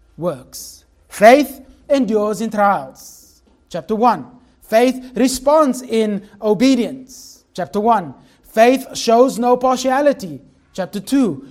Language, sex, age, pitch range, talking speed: English, male, 30-49, 175-240 Hz, 100 wpm